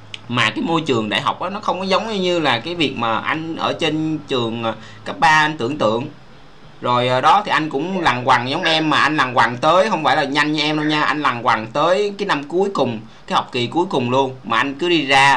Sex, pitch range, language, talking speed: male, 120-150 Hz, Vietnamese, 260 wpm